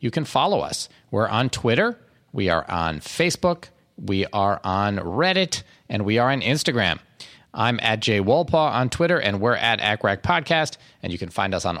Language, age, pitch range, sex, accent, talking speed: English, 40-59, 100-150 Hz, male, American, 190 wpm